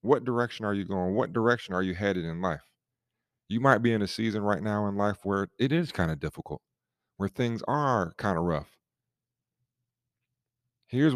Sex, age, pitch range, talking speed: male, 40-59, 95-125 Hz, 190 wpm